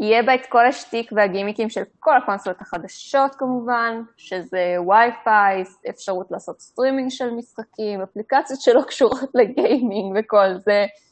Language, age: Hebrew, 20-39